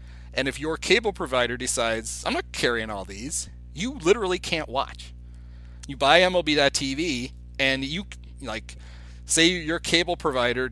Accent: American